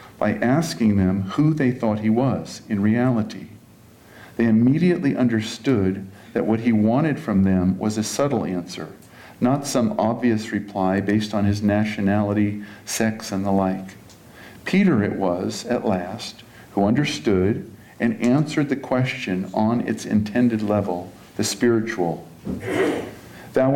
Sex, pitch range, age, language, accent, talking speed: male, 100-125 Hz, 50-69, English, American, 135 wpm